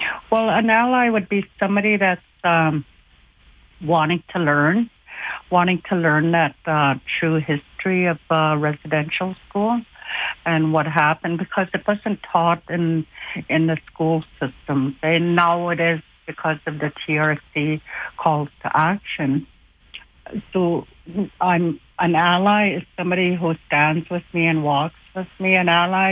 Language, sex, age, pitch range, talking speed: English, female, 60-79, 160-185 Hz, 140 wpm